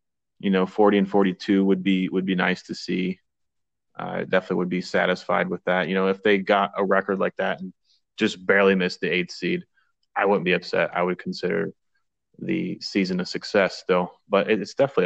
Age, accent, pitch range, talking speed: 30-49, American, 90-100 Hz, 205 wpm